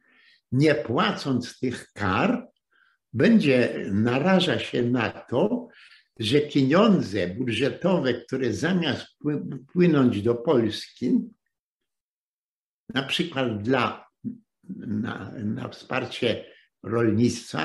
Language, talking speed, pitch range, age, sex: Polish, 80 wpm, 120-180 Hz, 60-79, male